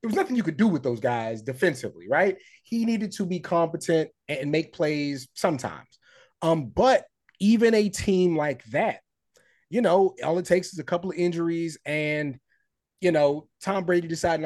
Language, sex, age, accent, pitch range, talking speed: English, male, 30-49, American, 145-195 Hz, 180 wpm